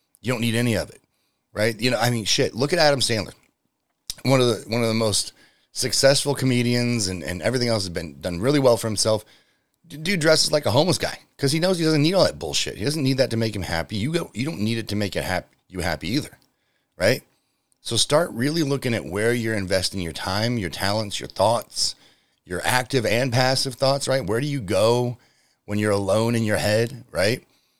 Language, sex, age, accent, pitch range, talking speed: English, male, 30-49, American, 105-135 Hz, 225 wpm